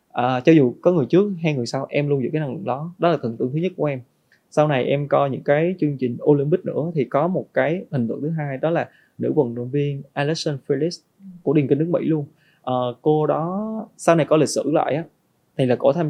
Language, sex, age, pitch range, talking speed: Vietnamese, male, 20-39, 135-165 Hz, 260 wpm